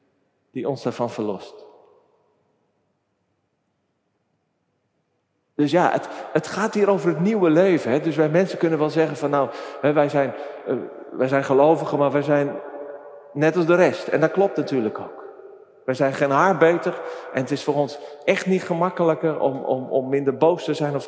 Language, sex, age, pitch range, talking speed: Dutch, male, 40-59, 140-200 Hz, 170 wpm